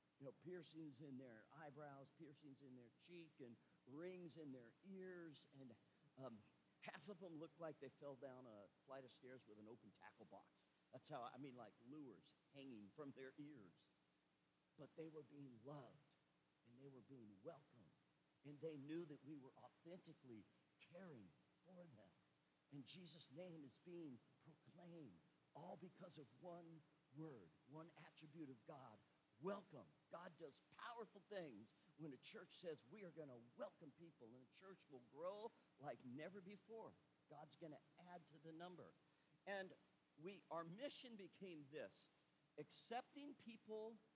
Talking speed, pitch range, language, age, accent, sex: 160 wpm, 135-180 Hz, English, 50-69, American, male